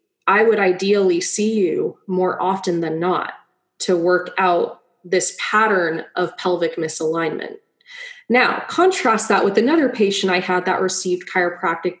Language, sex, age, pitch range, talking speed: English, female, 20-39, 180-225 Hz, 140 wpm